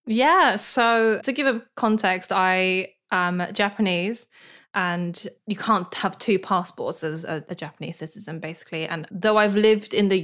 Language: English